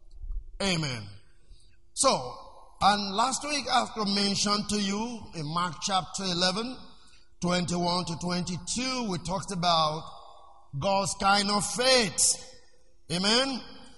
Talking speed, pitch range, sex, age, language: 105 wpm, 165-220 Hz, male, 50-69, English